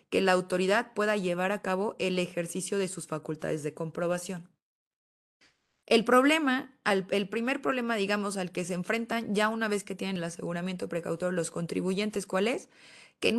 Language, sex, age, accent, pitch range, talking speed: Spanish, female, 20-39, Mexican, 180-230 Hz, 170 wpm